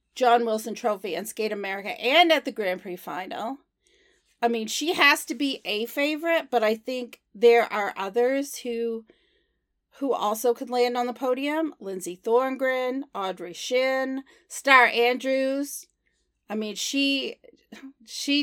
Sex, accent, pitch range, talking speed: female, American, 225-290 Hz, 145 wpm